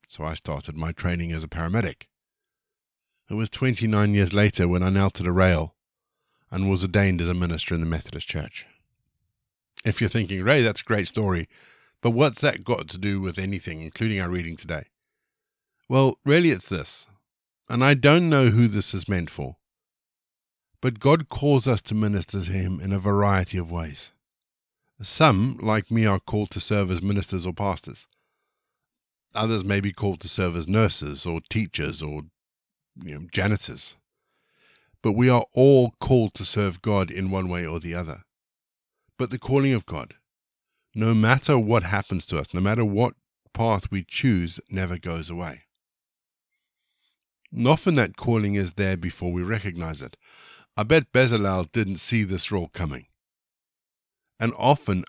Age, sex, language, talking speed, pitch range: 50-69, male, English, 165 wpm, 90-110 Hz